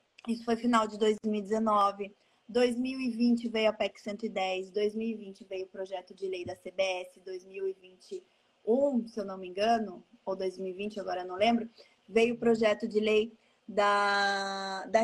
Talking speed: 150 wpm